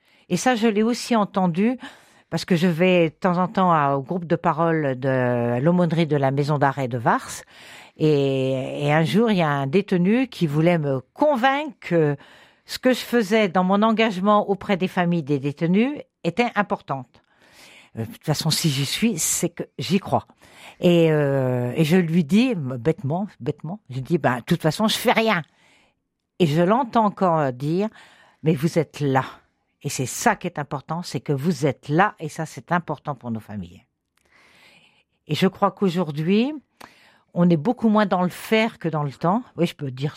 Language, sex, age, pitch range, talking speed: French, female, 50-69, 145-205 Hz, 200 wpm